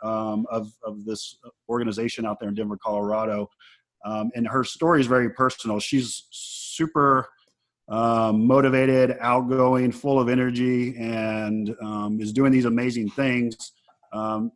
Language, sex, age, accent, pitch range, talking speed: English, male, 30-49, American, 105-120 Hz, 135 wpm